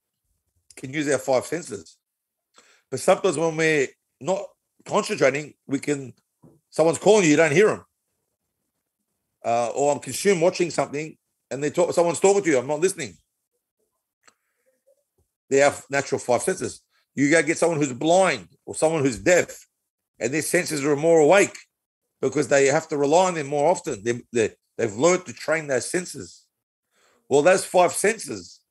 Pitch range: 145-180 Hz